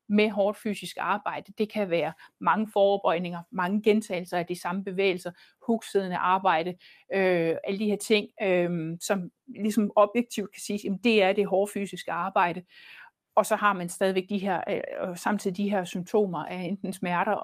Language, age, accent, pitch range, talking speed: Danish, 60-79, native, 180-220 Hz, 175 wpm